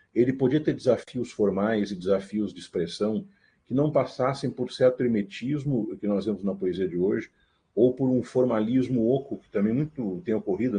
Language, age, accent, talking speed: Portuguese, 40-59, Brazilian, 180 wpm